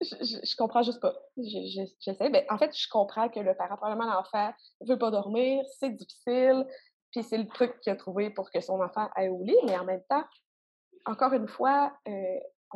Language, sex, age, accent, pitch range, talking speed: French, female, 20-39, Canadian, 200-270 Hz, 215 wpm